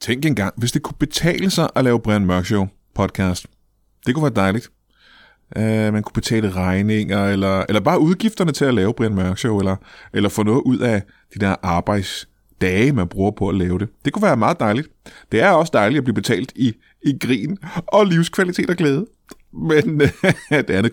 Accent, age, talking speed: native, 30-49, 200 wpm